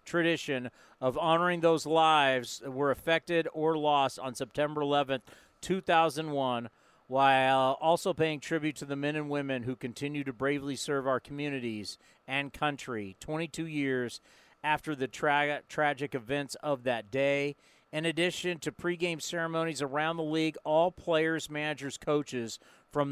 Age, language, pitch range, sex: 40-59, English, 130-155 Hz, male